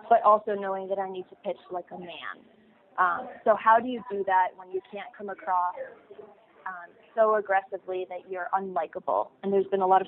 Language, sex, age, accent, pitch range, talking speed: English, female, 20-39, American, 190-220 Hz, 210 wpm